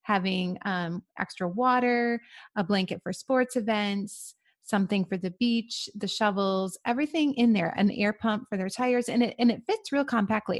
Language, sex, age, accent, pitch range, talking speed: English, female, 30-49, American, 185-240 Hz, 175 wpm